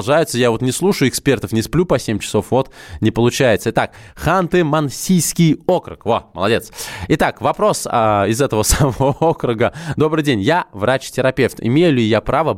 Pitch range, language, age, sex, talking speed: 110-140 Hz, Russian, 20-39, male, 155 wpm